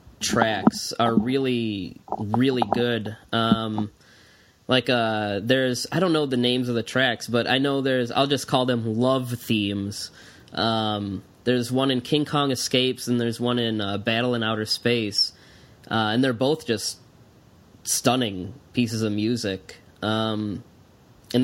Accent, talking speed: American, 150 wpm